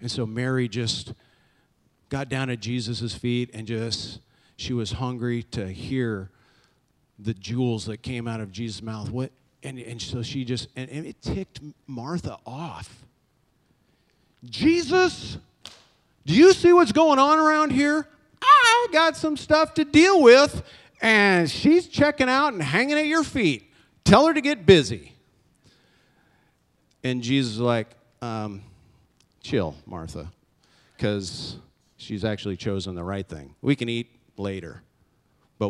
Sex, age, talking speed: male, 40-59, 145 wpm